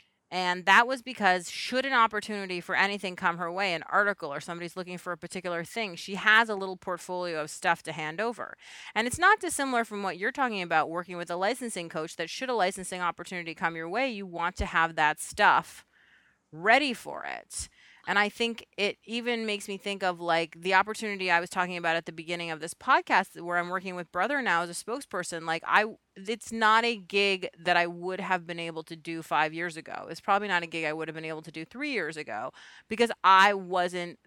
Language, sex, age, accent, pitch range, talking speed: English, female, 30-49, American, 170-210 Hz, 225 wpm